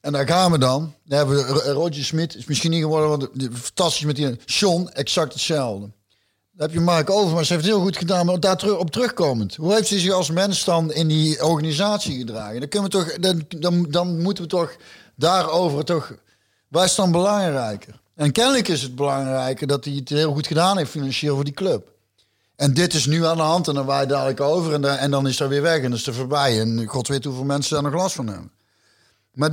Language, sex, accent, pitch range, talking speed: Dutch, male, Dutch, 140-175 Hz, 230 wpm